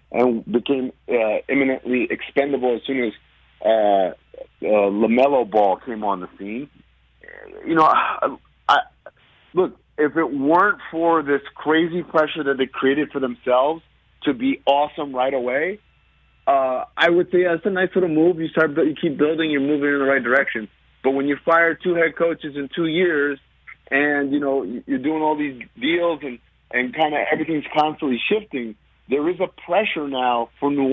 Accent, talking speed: American, 175 wpm